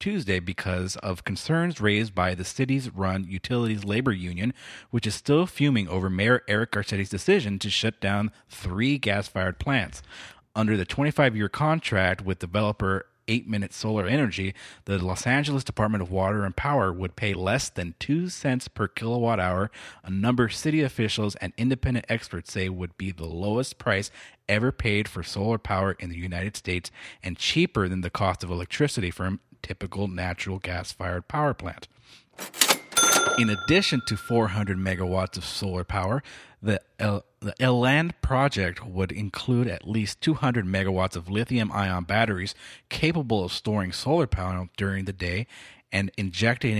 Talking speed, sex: 160 wpm, male